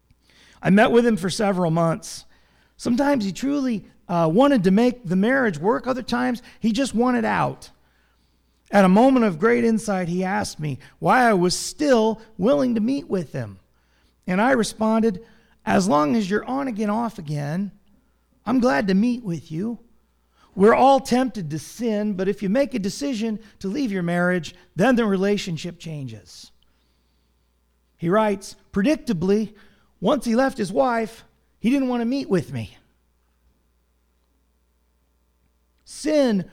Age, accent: 40-59, American